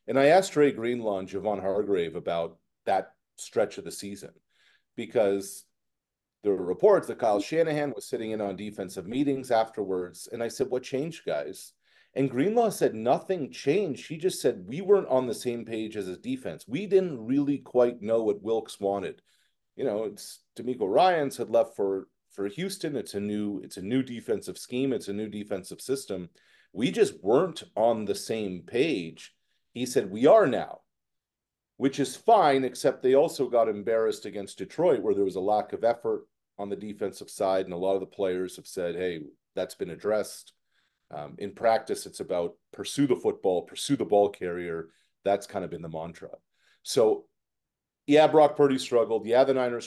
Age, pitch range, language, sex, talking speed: 40-59, 100-150 Hz, English, male, 185 wpm